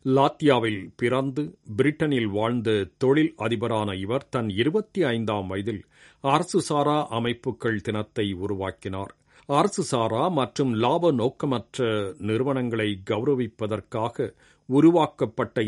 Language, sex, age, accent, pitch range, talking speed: Tamil, male, 50-69, native, 105-135 Hz, 90 wpm